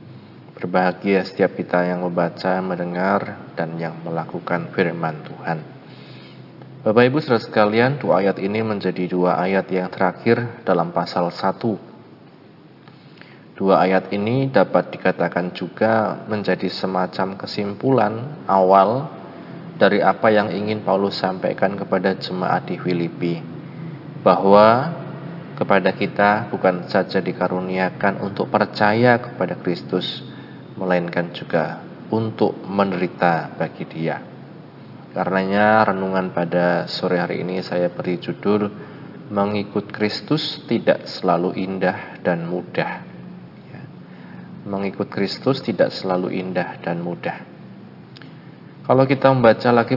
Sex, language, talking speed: male, Indonesian, 105 wpm